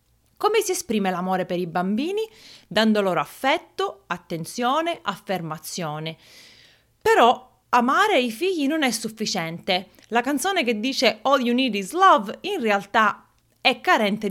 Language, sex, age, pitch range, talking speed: Italian, female, 30-49, 190-265 Hz, 135 wpm